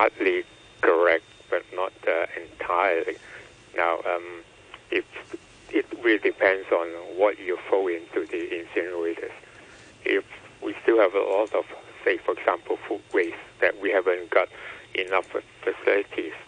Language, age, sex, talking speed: English, 60-79, male, 135 wpm